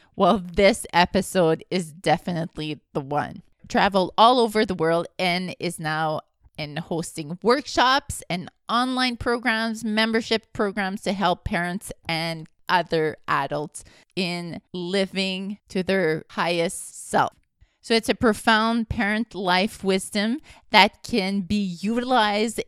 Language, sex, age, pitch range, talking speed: English, female, 30-49, 180-225 Hz, 120 wpm